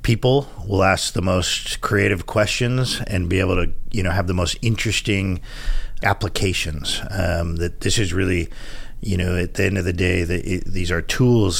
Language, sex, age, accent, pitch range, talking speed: English, male, 50-69, American, 85-100 Hz, 175 wpm